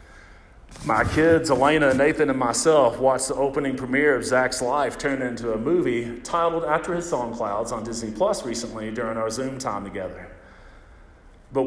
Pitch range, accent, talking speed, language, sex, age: 110-150 Hz, American, 165 wpm, English, male, 40-59